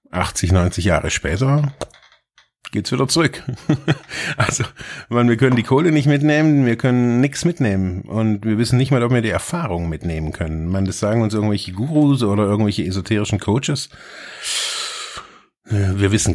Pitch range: 95-120 Hz